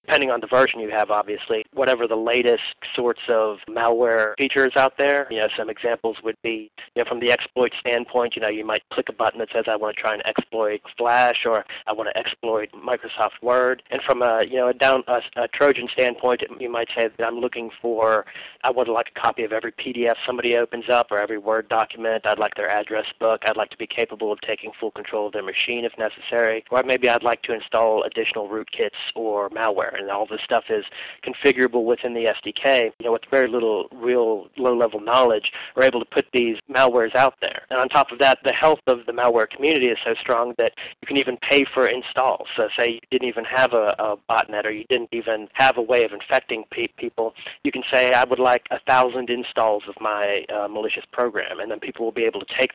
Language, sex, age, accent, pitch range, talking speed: English, male, 30-49, American, 110-125 Hz, 230 wpm